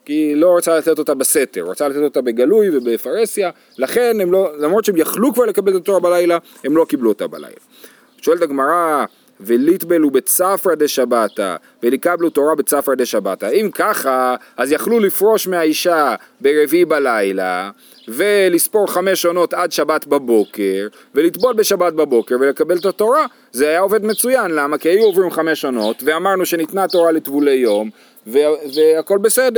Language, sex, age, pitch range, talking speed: Hebrew, male, 30-49, 145-235 Hz, 140 wpm